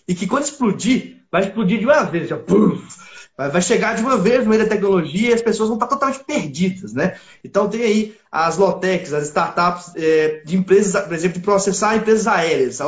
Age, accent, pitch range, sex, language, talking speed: 20-39, Brazilian, 185-245 Hz, male, Portuguese, 195 wpm